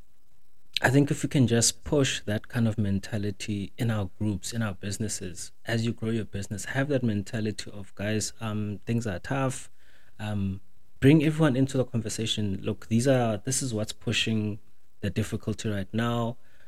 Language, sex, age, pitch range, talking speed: English, male, 30-49, 100-125 Hz, 175 wpm